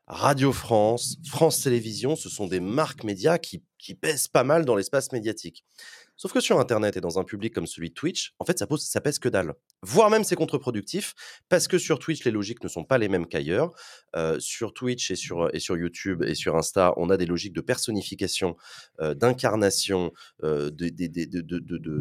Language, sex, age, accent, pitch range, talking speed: French, male, 30-49, French, 95-130 Hz, 215 wpm